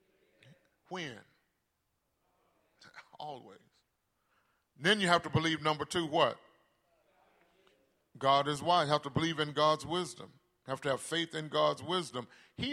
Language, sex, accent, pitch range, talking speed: English, male, American, 155-215 Hz, 130 wpm